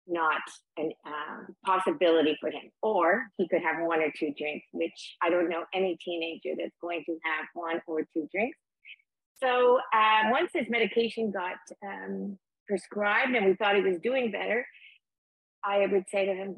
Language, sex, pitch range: English, female, 165-205 Hz